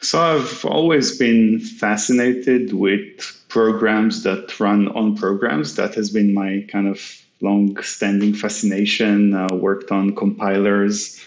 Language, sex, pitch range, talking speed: English, male, 100-115 Hz, 120 wpm